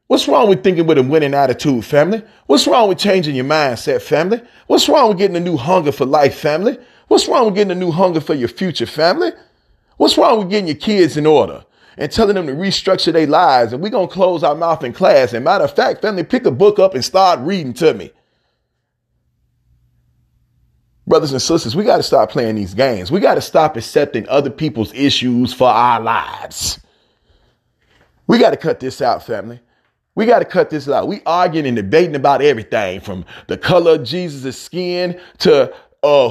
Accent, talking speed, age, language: American, 200 wpm, 30-49, English